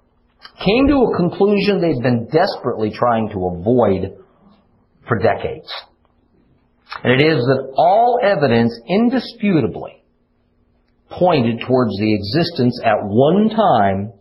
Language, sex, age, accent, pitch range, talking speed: English, male, 50-69, American, 115-180 Hz, 110 wpm